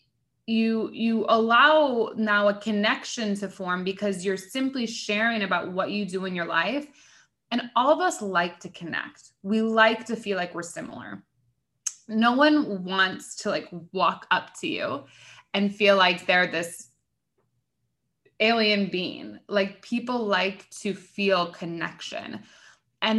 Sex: female